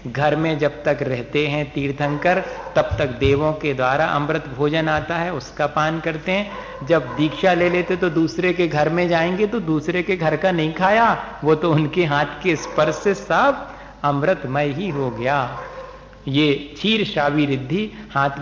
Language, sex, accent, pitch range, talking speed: Hindi, male, native, 140-180 Hz, 175 wpm